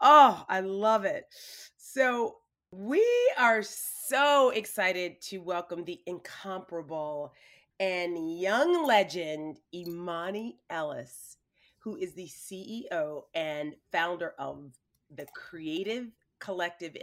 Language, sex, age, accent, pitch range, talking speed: English, female, 30-49, American, 165-215 Hz, 100 wpm